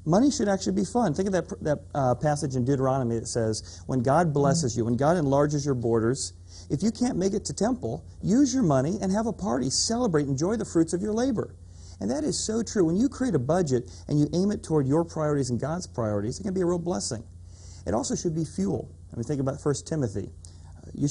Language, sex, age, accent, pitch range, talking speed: English, male, 40-59, American, 115-155 Hz, 240 wpm